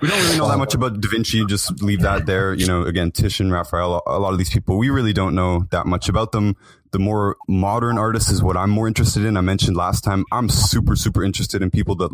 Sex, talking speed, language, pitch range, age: male, 255 wpm, English, 90-110 Hz, 20-39